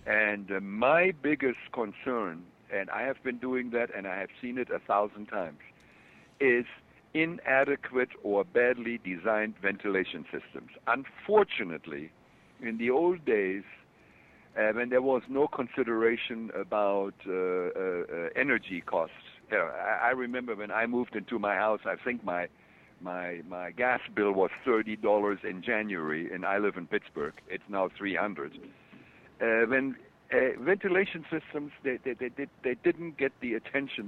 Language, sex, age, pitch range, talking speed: English, male, 60-79, 105-135 Hz, 150 wpm